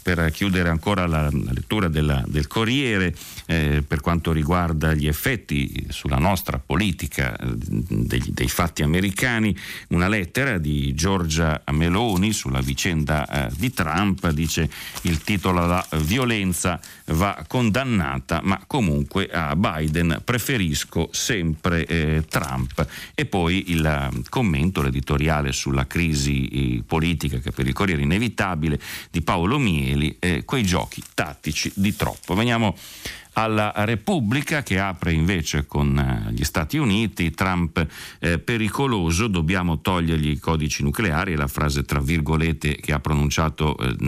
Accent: native